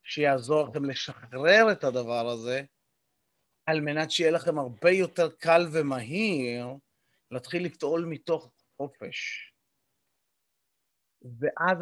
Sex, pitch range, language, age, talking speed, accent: male, 150-200 Hz, Hebrew, 30-49, 95 wpm, native